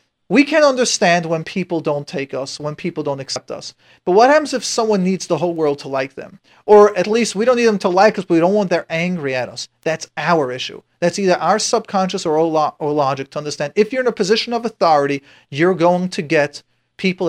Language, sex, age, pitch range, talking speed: English, male, 40-59, 170-220 Hz, 235 wpm